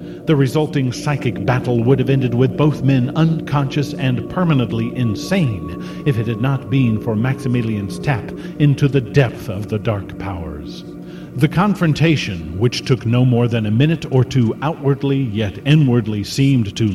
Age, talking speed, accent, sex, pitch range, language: 50-69, 160 wpm, American, male, 105-155 Hz, English